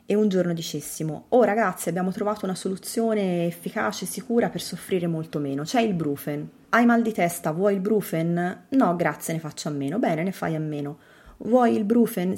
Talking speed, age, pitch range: 195 wpm, 30-49, 165-215 Hz